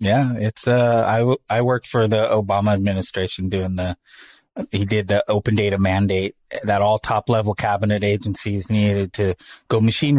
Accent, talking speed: American, 170 wpm